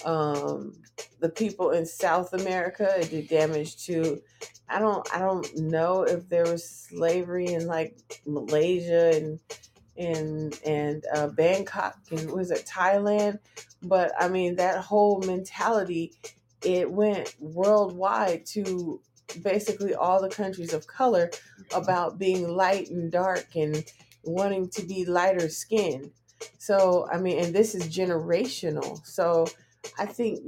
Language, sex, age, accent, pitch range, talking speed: English, female, 20-39, American, 160-195 Hz, 130 wpm